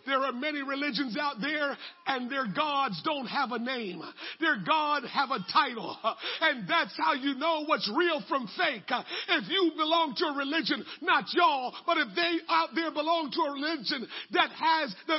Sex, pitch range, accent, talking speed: male, 285-345 Hz, American, 185 wpm